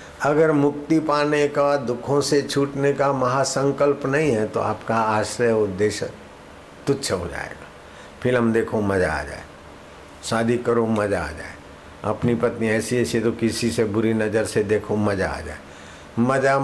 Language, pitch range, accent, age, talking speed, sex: Hindi, 95-120 Hz, native, 60-79, 160 wpm, male